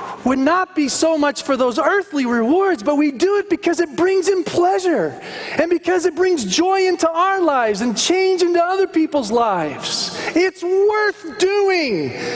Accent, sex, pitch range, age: American, male, 235-340 Hz, 40-59